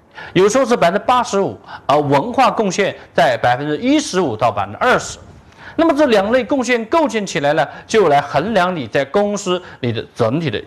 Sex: male